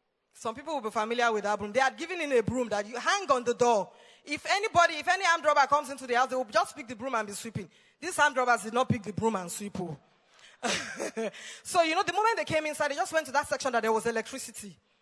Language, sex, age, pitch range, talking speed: English, female, 20-39, 220-280 Hz, 270 wpm